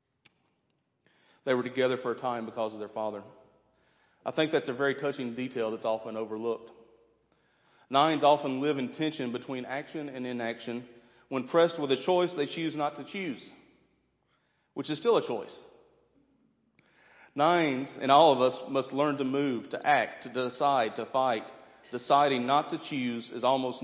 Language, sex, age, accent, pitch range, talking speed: English, male, 40-59, American, 120-145 Hz, 165 wpm